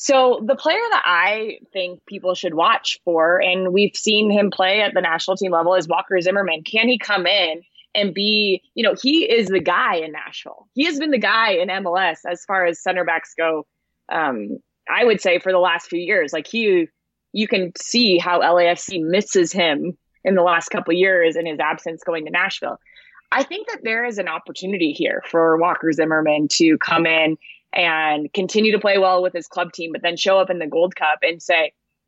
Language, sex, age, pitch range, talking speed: English, female, 20-39, 165-215 Hz, 205 wpm